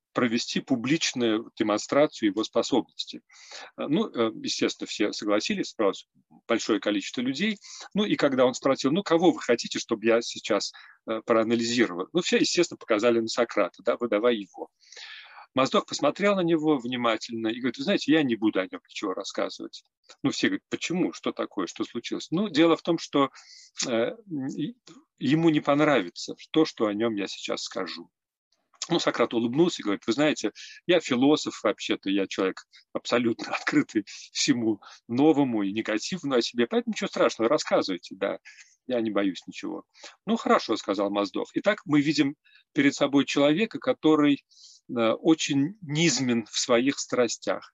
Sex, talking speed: male, 145 wpm